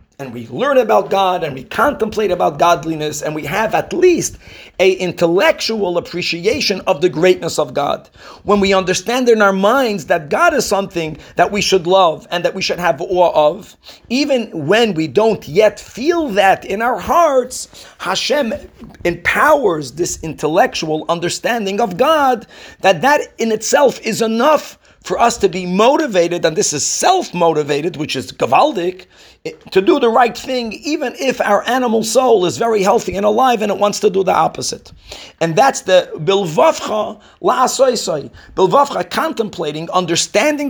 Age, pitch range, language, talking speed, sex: 40-59, 170-240 Hz, English, 160 wpm, male